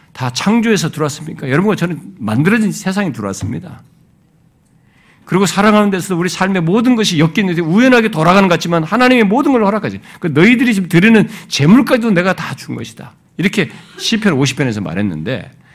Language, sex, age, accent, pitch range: Korean, male, 50-69, native, 135-215 Hz